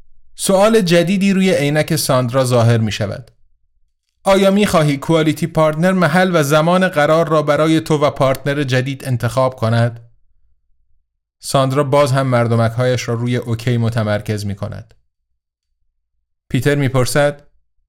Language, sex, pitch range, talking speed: Persian, male, 110-155 Hz, 135 wpm